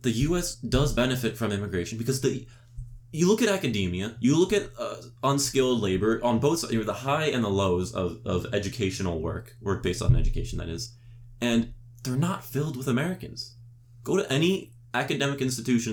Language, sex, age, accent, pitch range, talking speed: English, male, 20-39, American, 105-125 Hz, 185 wpm